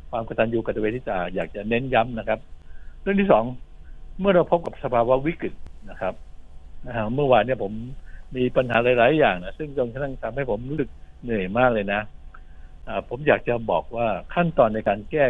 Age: 60-79